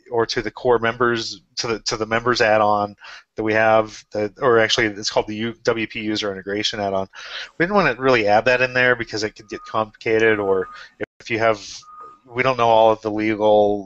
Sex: male